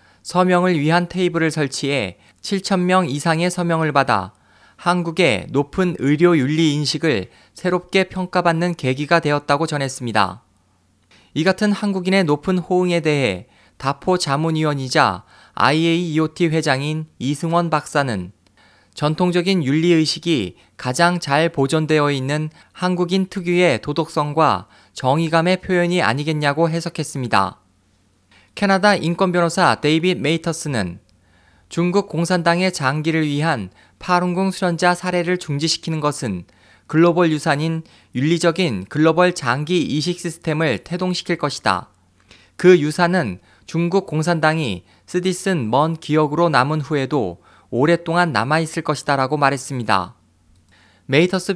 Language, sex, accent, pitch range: Korean, male, native, 130-175 Hz